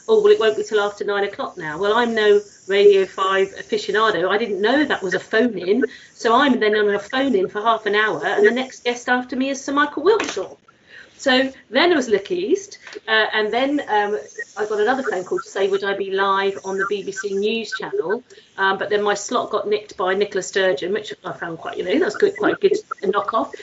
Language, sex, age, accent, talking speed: English, female, 40-59, British, 235 wpm